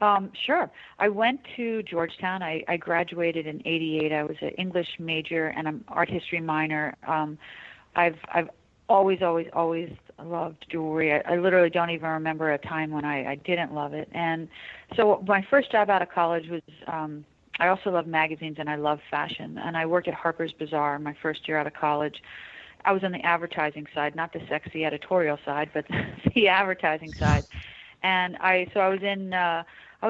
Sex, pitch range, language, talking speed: female, 160-185 Hz, English, 190 wpm